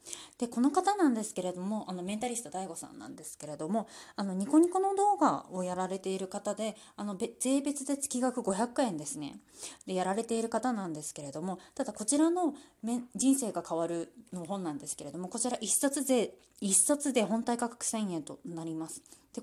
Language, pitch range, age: Japanese, 185-260 Hz, 20-39